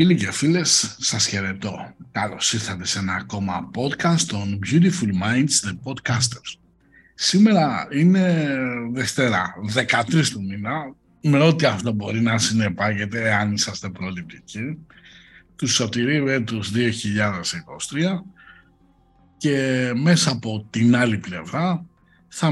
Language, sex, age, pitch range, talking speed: Greek, male, 60-79, 105-150 Hz, 110 wpm